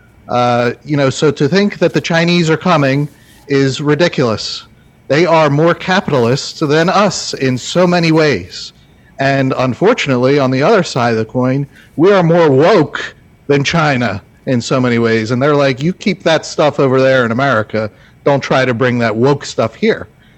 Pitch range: 115-155 Hz